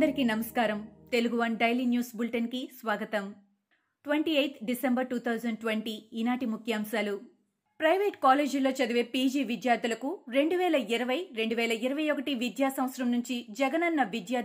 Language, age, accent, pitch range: Telugu, 30-49, native, 225-275 Hz